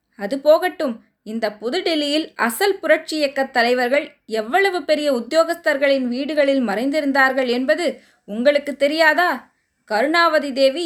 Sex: female